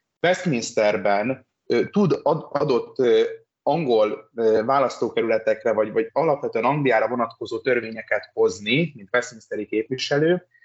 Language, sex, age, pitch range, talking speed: Hungarian, male, 30-49, 110-155 Hz, 85 wpm